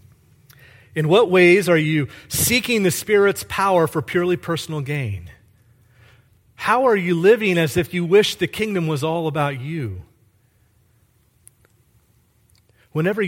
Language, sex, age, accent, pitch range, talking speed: English, male, 40-59, American, 125-195 Hz, 125 wpm